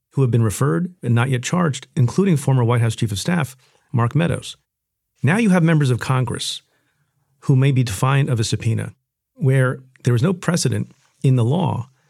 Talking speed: 190 wpm